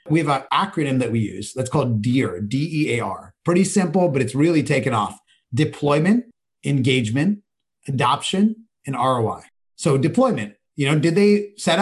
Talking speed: 150 wpm